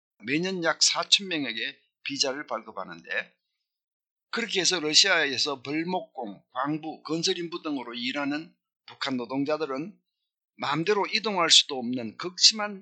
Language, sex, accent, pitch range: Korean, male, native, 140-200 Hz